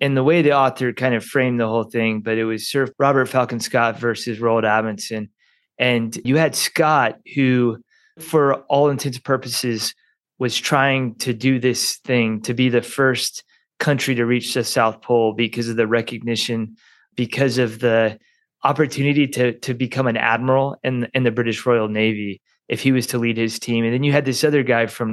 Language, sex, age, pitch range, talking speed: English, male, 20-39, 115-135 Hz, 195 wpm